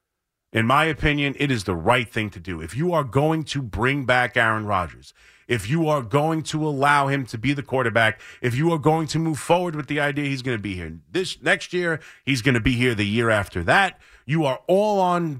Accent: American